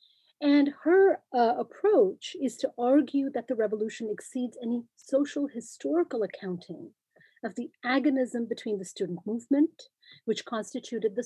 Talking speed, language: 135 wpm, English